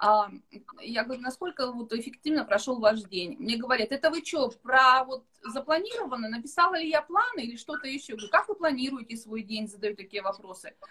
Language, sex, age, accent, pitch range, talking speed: Russian, female, 20-39, native, 215-305 Hz, 165 wpm